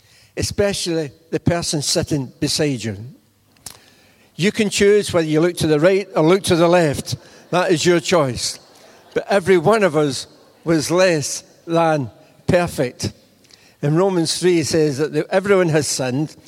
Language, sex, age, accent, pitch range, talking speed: English, male, 60-79, British, 145-170 Hz, 155 wpm